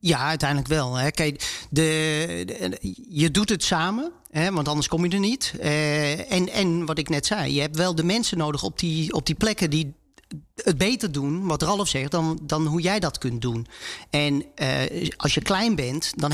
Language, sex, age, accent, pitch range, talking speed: Dutch, male, 40-59, Dutch, 145-180 Hz, 210 wpm